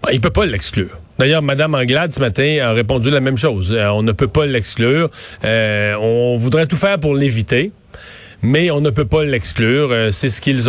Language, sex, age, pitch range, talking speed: French, male, 40-59, 115-150 Hz, 210 wpm